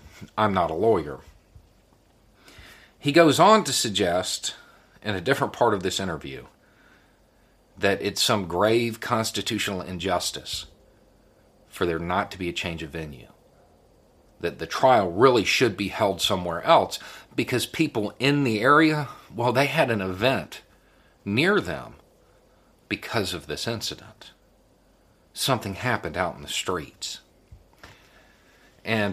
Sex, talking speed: male, 130 wpm